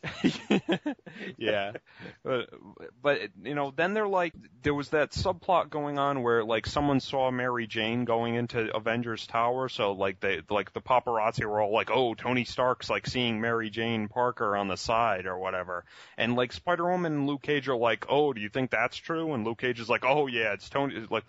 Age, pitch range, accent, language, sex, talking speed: 30-49, 105-145 Hz, American, English, male, 200 wpm